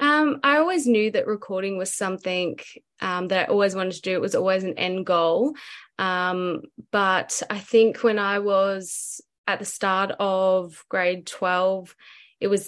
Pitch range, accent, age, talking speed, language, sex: 180-215 Hz, Australian, 20-39, 170 wpm, English, female